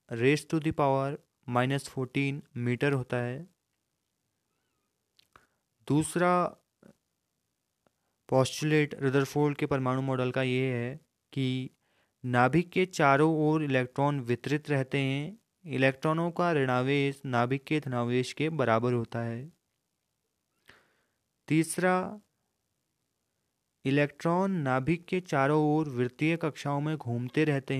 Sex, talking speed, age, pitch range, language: male, 100 wpm, 30-49, 130-155 Hz, Hindi